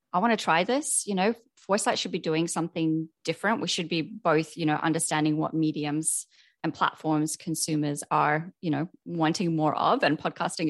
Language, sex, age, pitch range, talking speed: English, female, 20-39, 160-200 Hz, 185 wpm